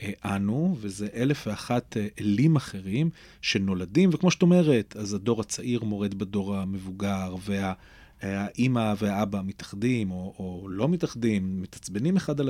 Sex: male